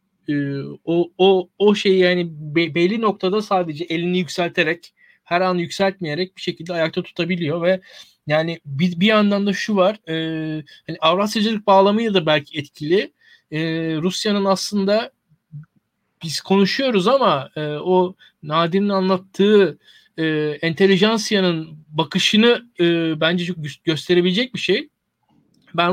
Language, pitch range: Turkish, 160-205 Hz